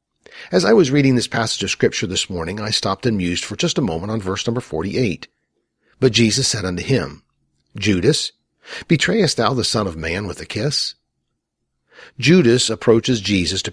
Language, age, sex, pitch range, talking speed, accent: English, 50-69, male, 95-125 Hz, 180 wpm, American